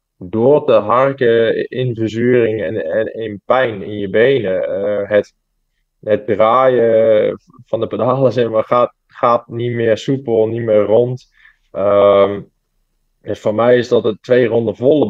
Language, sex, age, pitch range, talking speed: Dutch, male, 20-39, 105-120 Hz, 160 wpm